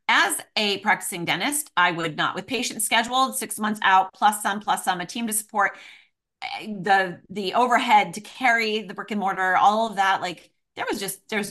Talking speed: 200 wpm